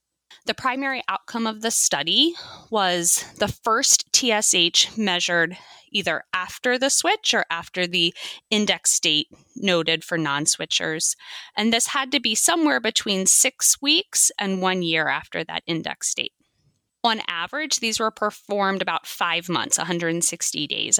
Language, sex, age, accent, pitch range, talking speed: English, female, 20-39, American, 175-245 Hz, 140 wpm